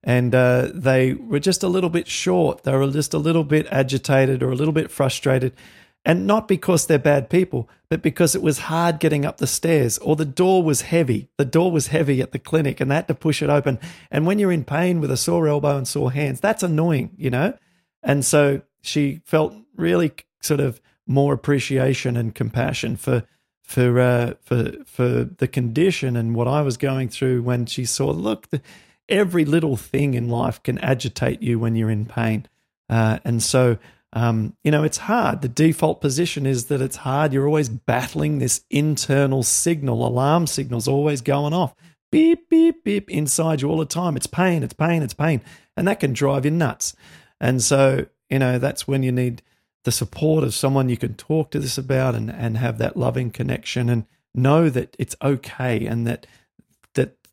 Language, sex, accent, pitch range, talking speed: English, male, Australian, 125-160 Hz, 200 wpm